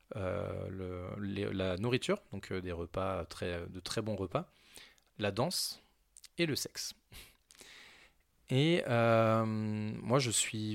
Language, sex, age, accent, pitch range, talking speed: French, male, 20-39, French, 95-120 Hz, 110 wpm